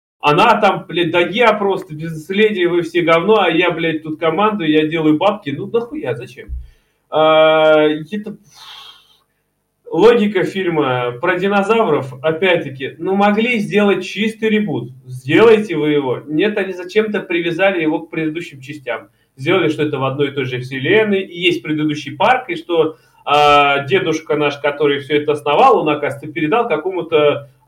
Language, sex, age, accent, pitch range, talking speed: Russian, male, 20-39, native, 140-185 Hz, 145 wpm